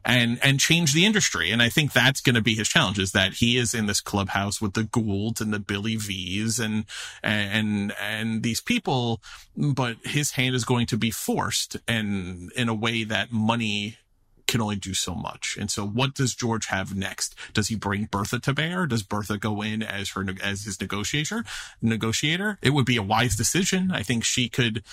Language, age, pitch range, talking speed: English, 30-49, 105-130 Hz, 205 wpm